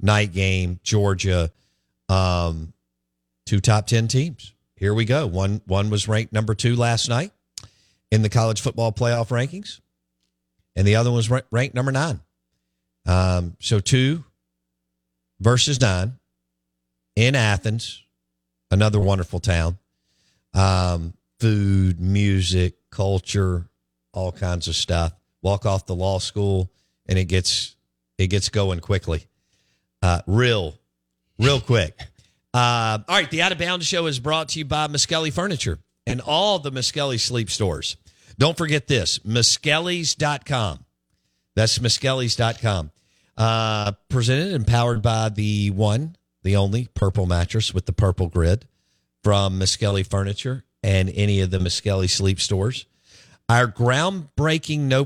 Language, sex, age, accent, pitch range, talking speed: English, male, 50-69, American, 90-120 Hz, 135 wpm